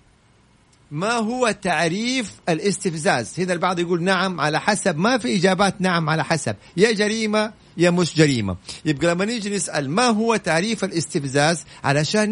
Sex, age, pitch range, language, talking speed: male, 50-69, 145-185 Hz, Arabic, 140 wpm